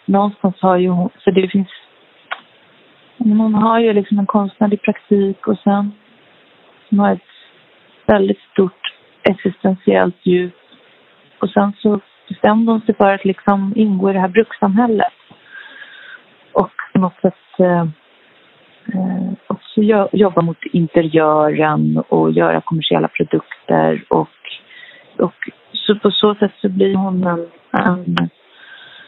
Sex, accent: female, native